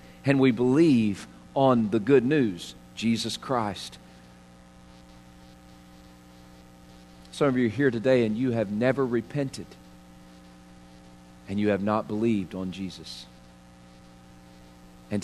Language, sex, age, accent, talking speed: English, male, 40-59, American, 110 wpm